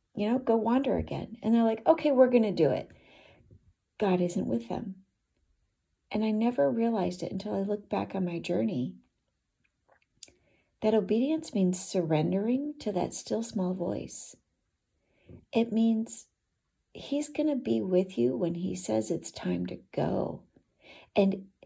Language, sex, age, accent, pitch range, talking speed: English, female, 40-59, American, 185-230 Hz, 150 wpm